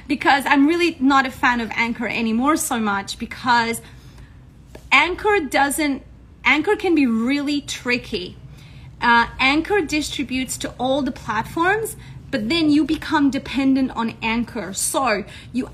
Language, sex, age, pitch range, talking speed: English, female, 30-49, 235-295 Hz, 135 wpm